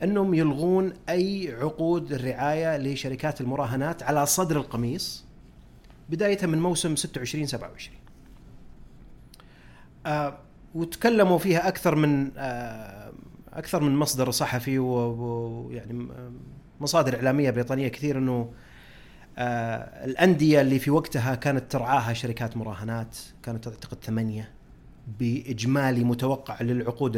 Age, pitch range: 30-49, 120-155 Hz